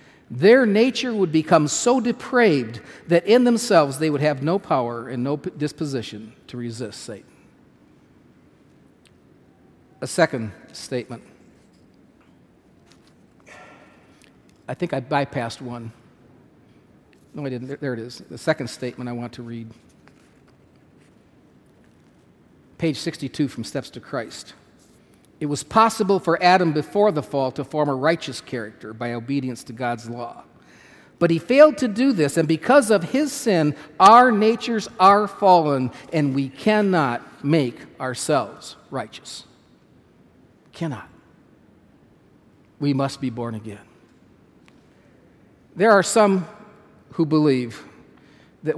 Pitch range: 125-185 Hz